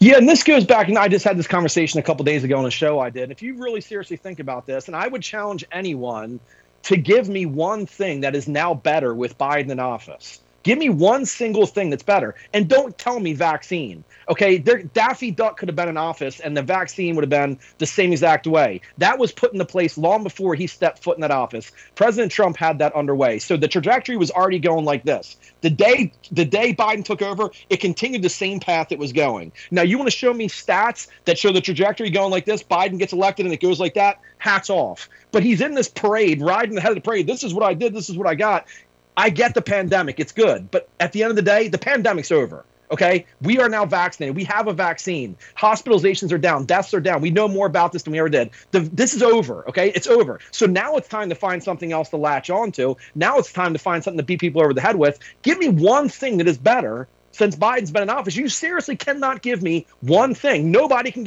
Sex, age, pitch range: male, 30-49, 160-215 Hz